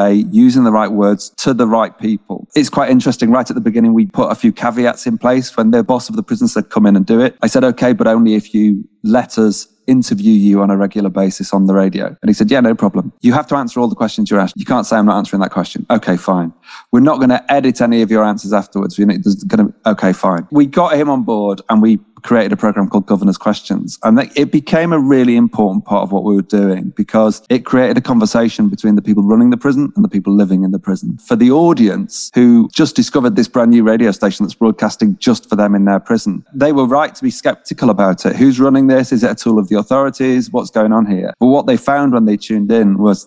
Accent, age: British, 30-49